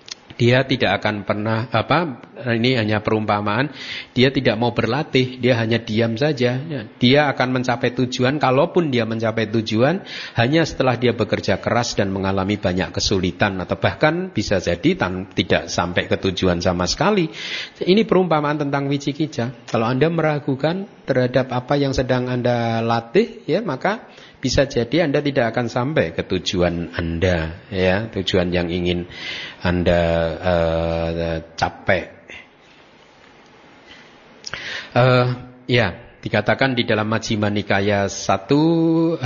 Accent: native